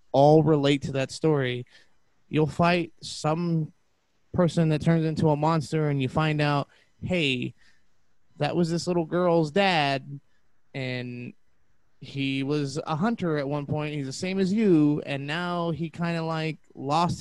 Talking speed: 155 wpm